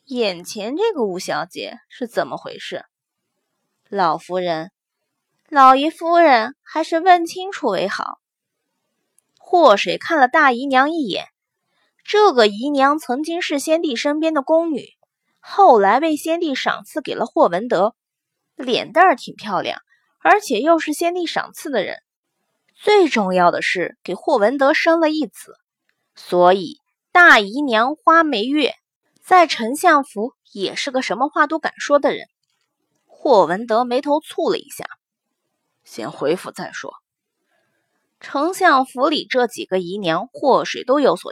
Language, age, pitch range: Chinese, 20-39, 250-330 Hz